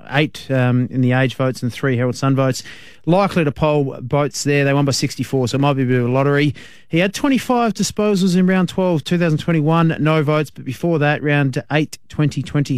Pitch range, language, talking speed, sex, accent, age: 130-160 Hz, English, 210 wpm, male, Australian, 30-49